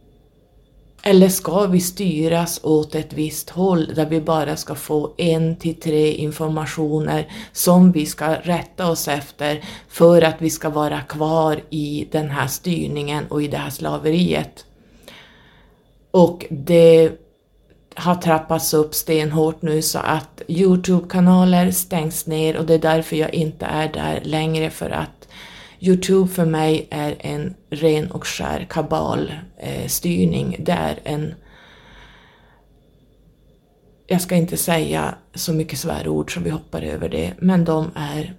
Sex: female